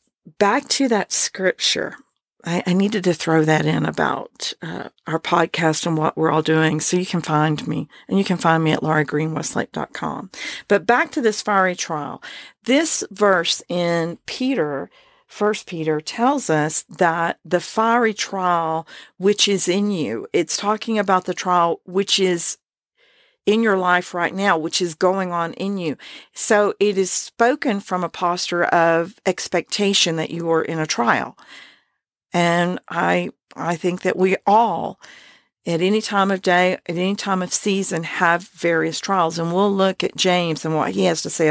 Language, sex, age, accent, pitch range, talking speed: English, female, 50-69, American, 165-205 Hz, 170 wpm